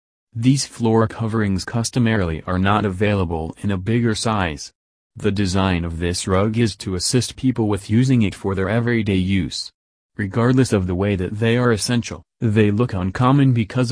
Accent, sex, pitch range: American, male, 90-115 Hz